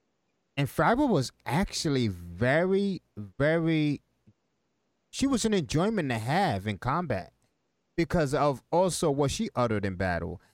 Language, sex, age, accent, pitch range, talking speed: English, male, 30-49, American, 110-185 Hz, 125 wpm